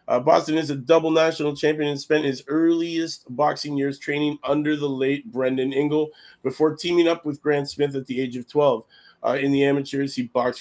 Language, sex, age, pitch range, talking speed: English, male, 30-49, 130-150 Hz, 205 wpm